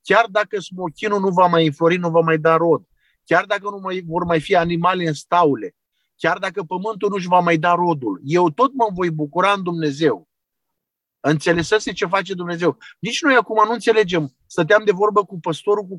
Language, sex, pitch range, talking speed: Romanian, male, 155-190 Hz, 195 wpm